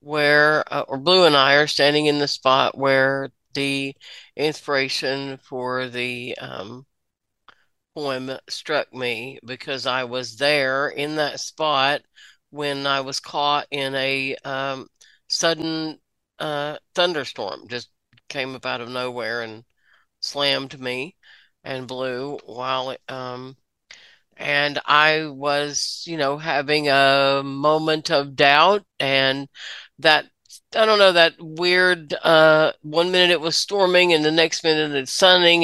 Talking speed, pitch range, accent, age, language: 135 wpm, 130-155 Hz, American, 50-69, English